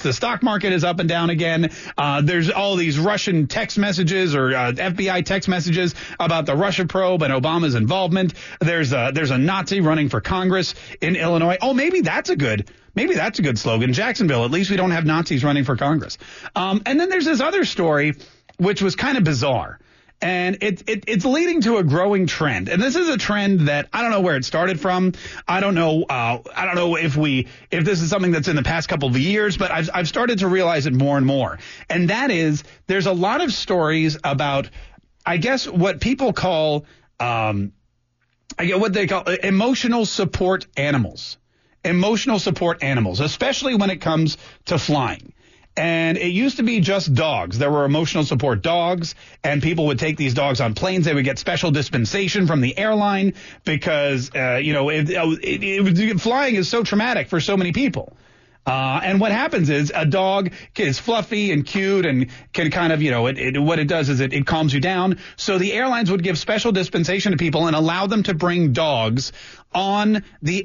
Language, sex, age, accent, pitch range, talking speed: English, male, 30-49, American, 145-195 Hz, 200 wpm